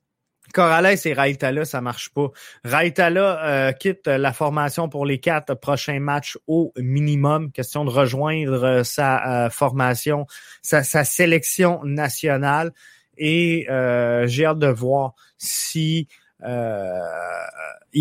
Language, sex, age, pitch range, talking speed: French, male, 30-49, 135-160 Hz, 120 wpm